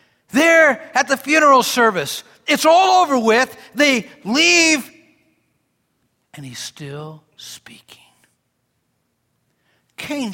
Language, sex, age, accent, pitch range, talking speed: English, male, 60-79, American, 180-275 Hz, 95 wpm